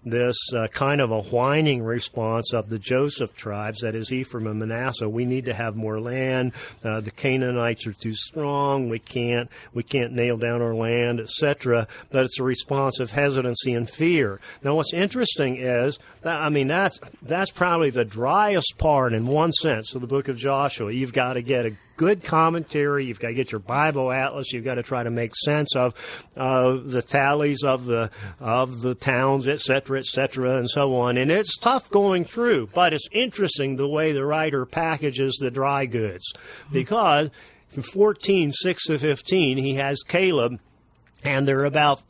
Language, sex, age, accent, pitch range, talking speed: English, male, 50-69, American, 120-145 Hz, 180 wpm